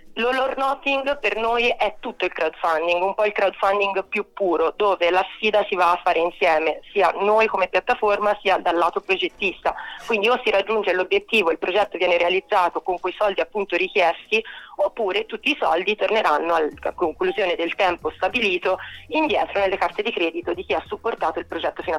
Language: Italian